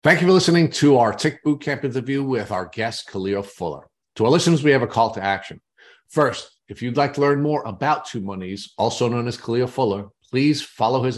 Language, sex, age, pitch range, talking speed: English, male, 50-69, 110-140 Hz, 220 wpm